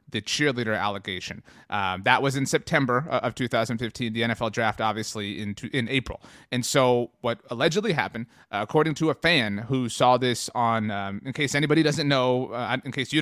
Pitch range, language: 110-140 Hz, English